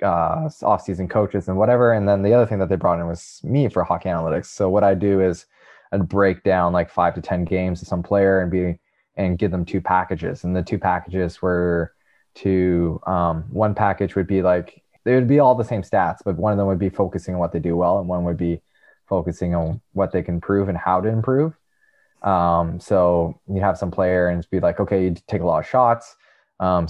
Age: 20-39